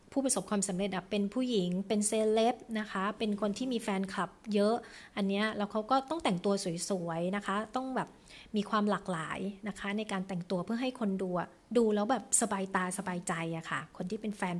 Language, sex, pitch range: Thai, female, 185-220 Hz